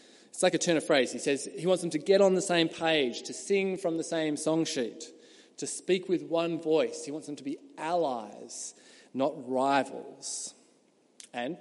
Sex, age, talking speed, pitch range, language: male, 20-39, 195 wpm, 145-200 Hz, English